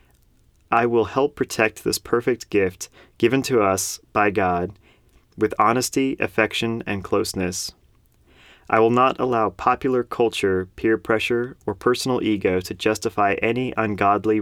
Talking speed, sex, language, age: 135 wpm, male, English, 30-49